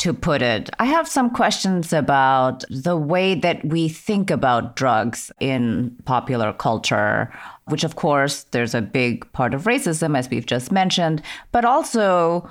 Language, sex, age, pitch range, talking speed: English, female, 30-49, 135-190 Hz, 160 wpm